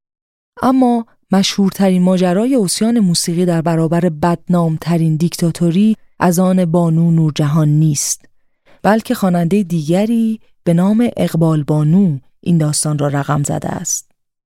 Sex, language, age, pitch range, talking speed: female, Persian, 30-49, 155-190 Hz, 115 wpm